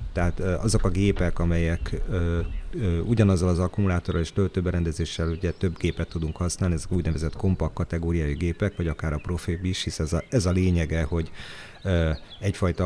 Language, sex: Hungarian, male